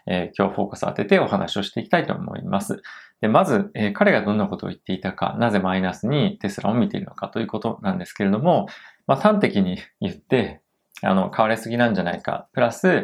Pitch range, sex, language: 95-120 Hz, male, Japanese